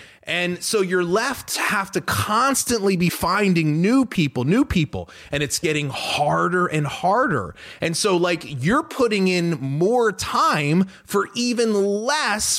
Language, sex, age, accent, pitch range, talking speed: English, male, 30-49, American, 135-200 Hz, 145 wpm